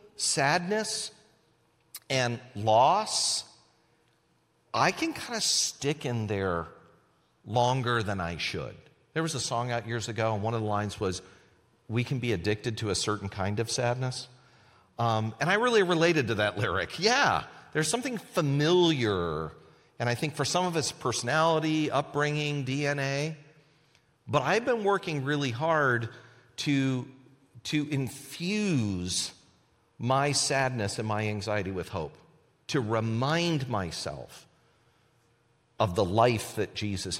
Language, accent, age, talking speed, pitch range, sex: English, American, 40-59, 135 wpm, 105-150 Hz, male